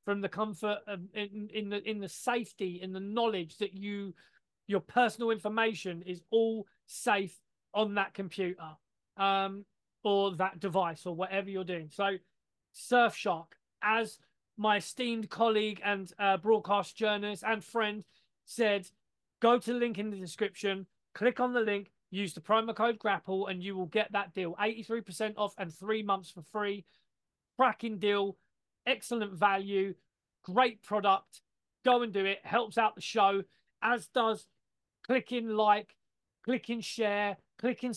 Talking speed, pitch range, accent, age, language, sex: 150 wpm, 195-225 Hz, British, 20-39, English, male